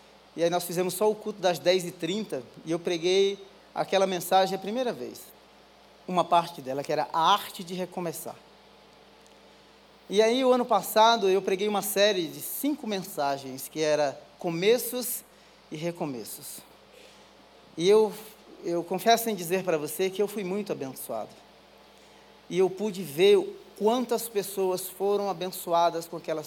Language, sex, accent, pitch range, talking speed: Portuguese, male, Brazilian, 170-210 Hz, 150 wpm